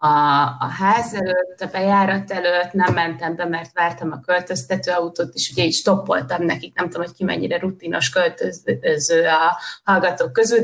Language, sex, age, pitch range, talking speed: Hungarian, female, 20-39, 165-200 Hz, 165 wpm